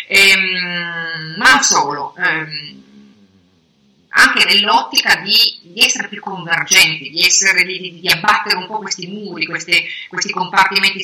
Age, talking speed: 30-49, 110 wpm